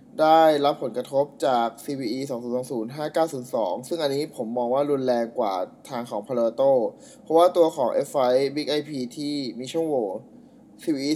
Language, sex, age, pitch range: Thai, male, 20-39, 130-180 Hz